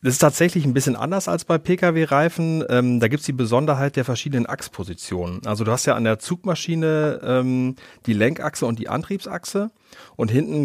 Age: 30-49